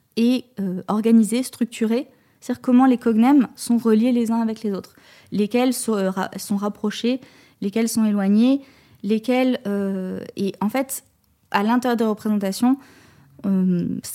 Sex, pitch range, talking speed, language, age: female, 200-240 Hz, 145 wpm, French, 20-39